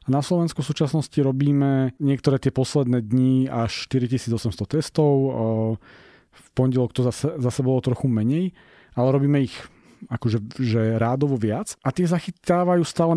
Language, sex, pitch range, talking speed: Slovak, male, 120-140 Hz, 145 wpm